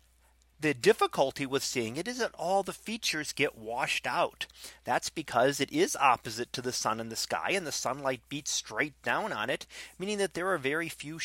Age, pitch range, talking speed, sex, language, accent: 30-49, 115-145 Hz, 195 wpm, male, English, American